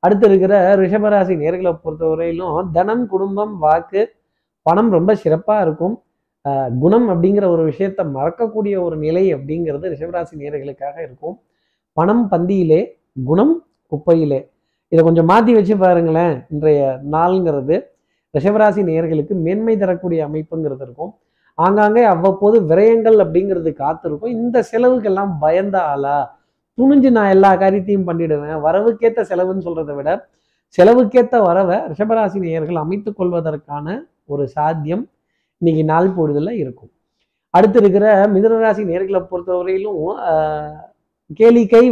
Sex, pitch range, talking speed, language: male, 160-210 Hz, 110 wpm, Tamil